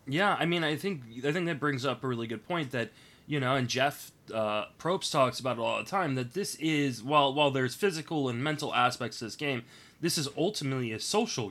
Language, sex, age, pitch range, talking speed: English, male, 20-39, 110-145 Hz, 235 wpm